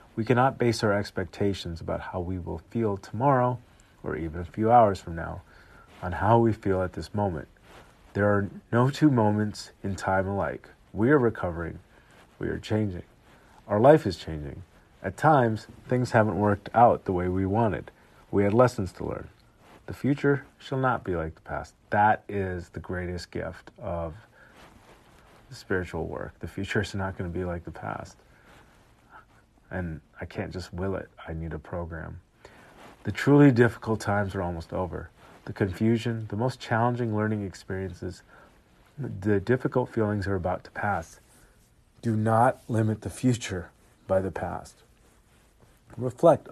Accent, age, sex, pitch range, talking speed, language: American, 40-59, male, 90-115 Hz, 160 wpm, English